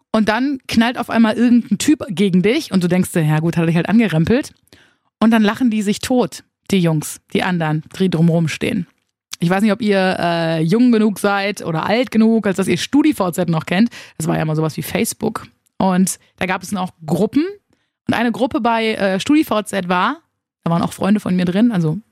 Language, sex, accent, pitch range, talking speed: German, female, German, 175-225 Hz, 215 wpm